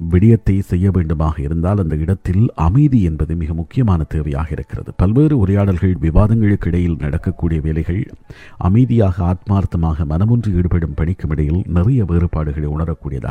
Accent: native